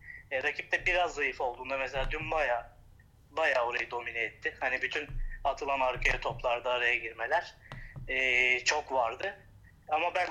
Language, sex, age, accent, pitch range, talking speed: Turkish, male, 30-49, native, 125-150 Hz, 140 wpm